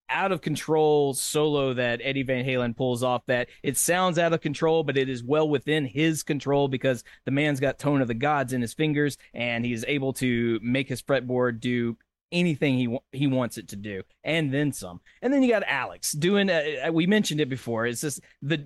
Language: English